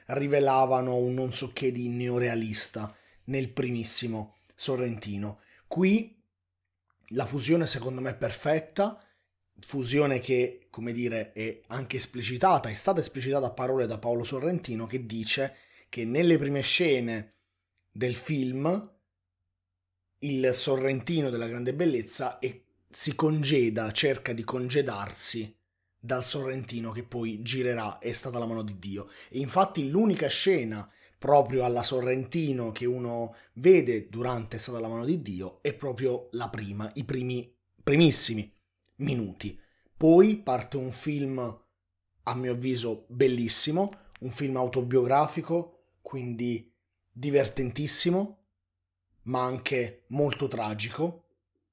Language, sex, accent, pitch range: Italian, male, native, 110-140 Hz